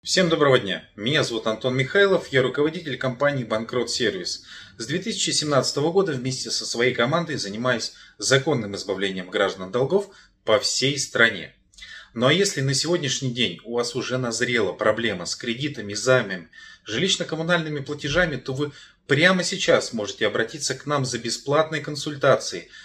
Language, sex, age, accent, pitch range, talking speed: Russian, male, 30-49, native, 120-160 Hz, 140 wpm